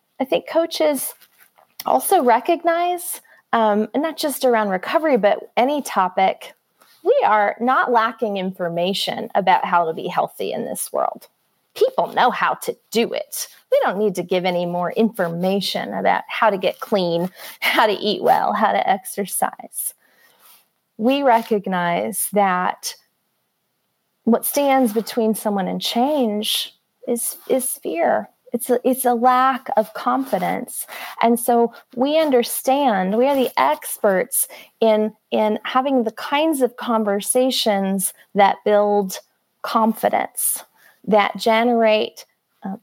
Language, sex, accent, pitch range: English, female, American, 205-260 Hz